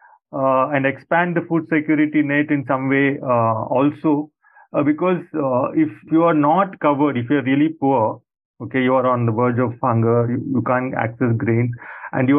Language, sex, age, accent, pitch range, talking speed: English, male, 30-49, Indian, 130-160 Hz, 195 wpm